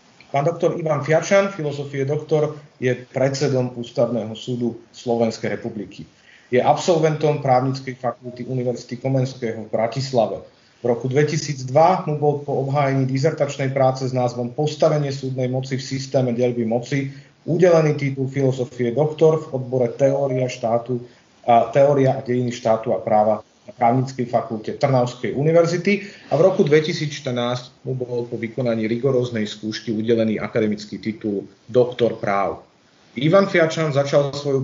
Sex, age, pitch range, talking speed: male, 30-49, 120-150 Hz, 130 wpm